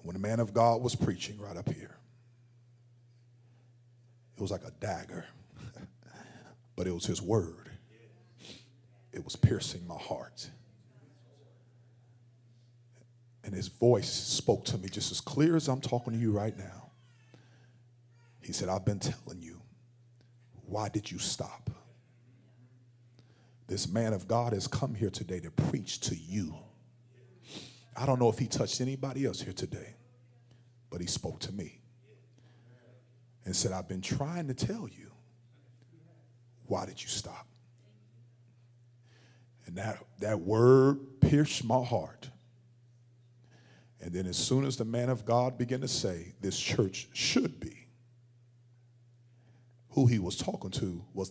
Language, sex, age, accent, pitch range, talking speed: English, male, 40-59, American, 115-125 Hz, 140 wpm